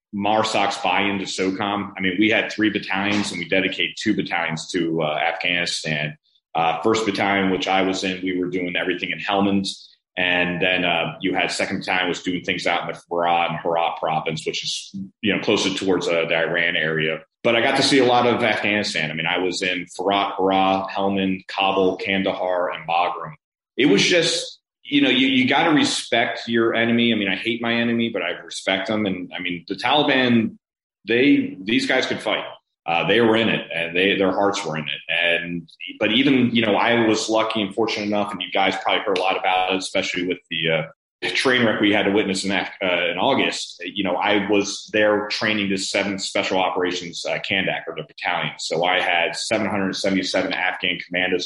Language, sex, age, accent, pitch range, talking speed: English, male, 30-49, American, 90-105 Hz, 210 wpm